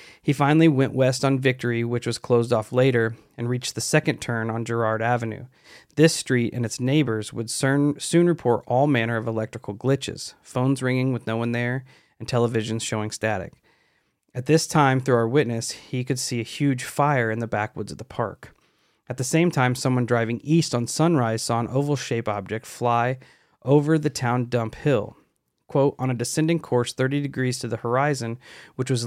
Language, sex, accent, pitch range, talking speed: English, male, American, 115-135 Hz, 190 wpm